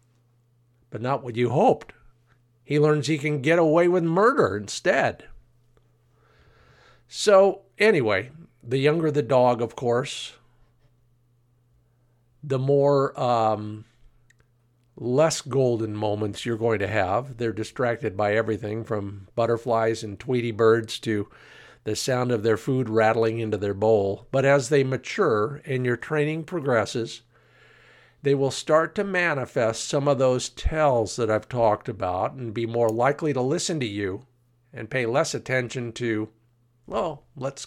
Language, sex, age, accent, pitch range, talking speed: English, male, 50-69, American, 115-140 Hz, 140 wpm